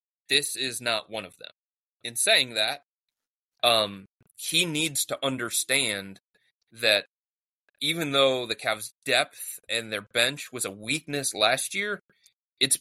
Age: 30-49